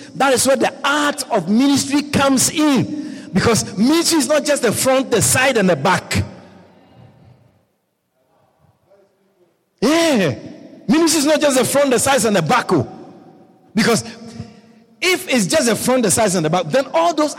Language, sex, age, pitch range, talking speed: English, male, 50-69, 155-260 Hz, 160 wpm